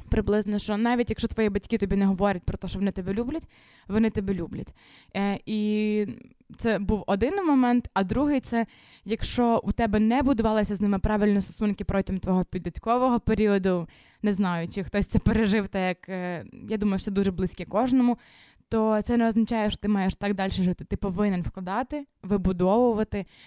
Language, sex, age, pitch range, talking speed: Ukrainian, female, 20-39, 200-240 Hz, 180 wpm